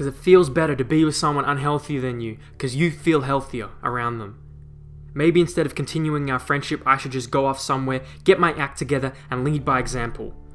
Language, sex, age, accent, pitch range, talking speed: English, male, 20-39, Australian, 125-155 Hz, 210 wpm